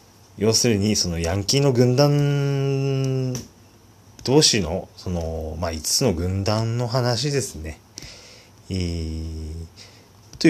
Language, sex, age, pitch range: Japanese, male, 30-49, 85-115 Hz